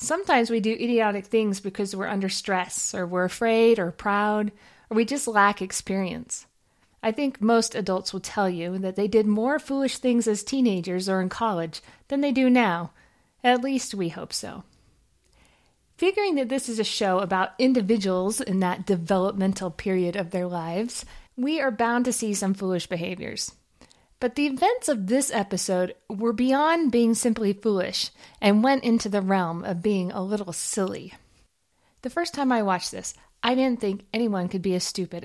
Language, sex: English, female